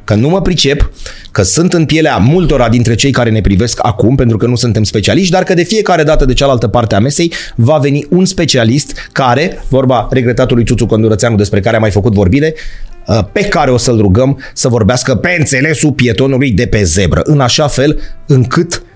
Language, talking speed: Romanian, 195 wpm